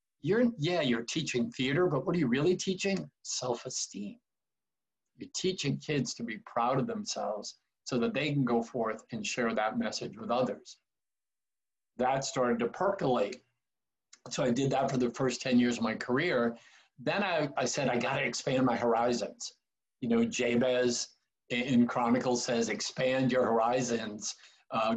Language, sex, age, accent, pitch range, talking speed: English, male, 50-69, American, 120-150 Hz, 160 wpm